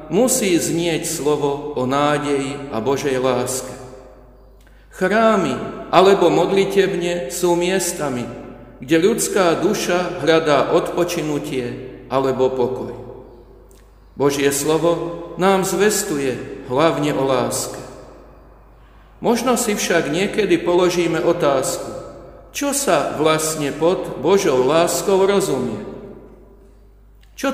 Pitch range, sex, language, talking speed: 140-190 Hz, male, Slovak, 90 wpm